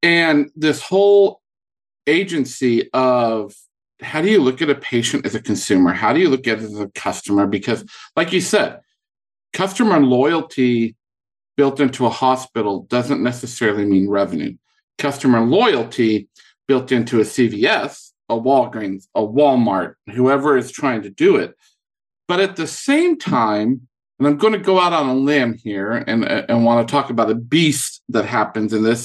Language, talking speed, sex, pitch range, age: English, 165 wpm, male, 120-185 Hz, 50-69